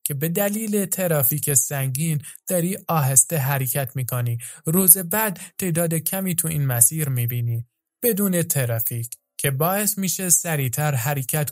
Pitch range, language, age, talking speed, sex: 135-185 Hz, Persian, 20-39, 125 wpm, male